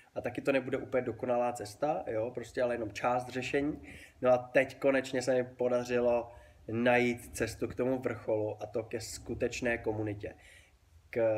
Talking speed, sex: 165 wpm, male